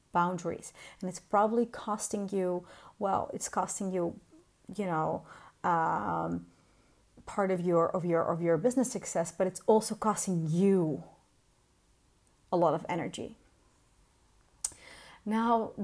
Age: 30-49